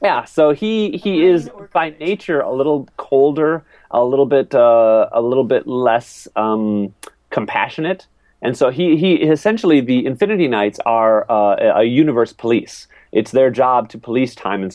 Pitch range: 95-130 Hz